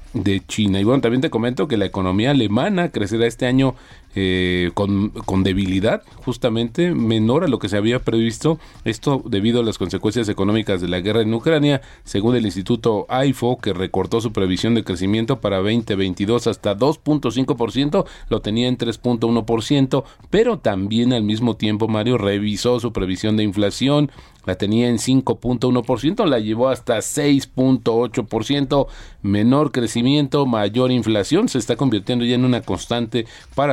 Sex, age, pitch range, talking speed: male, 40-59, 100-125 Hz, 155 wpm